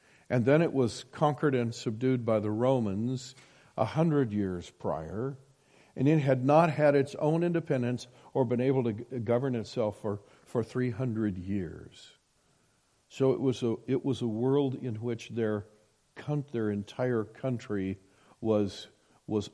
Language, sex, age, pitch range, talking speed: English, male, 60-79, 115-155 Hz, 145 wpm